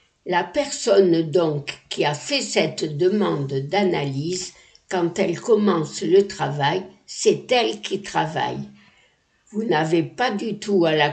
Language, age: French, 60-79